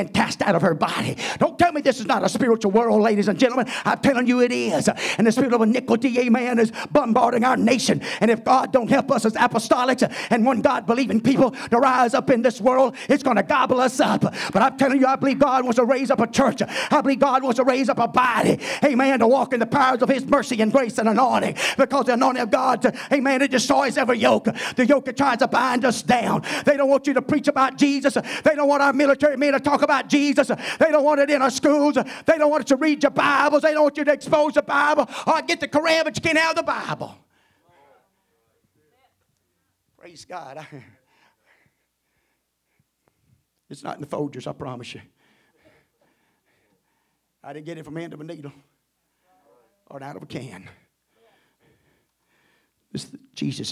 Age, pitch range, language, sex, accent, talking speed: 40-59, 230-280 Hz, English, male, American, 210 wpm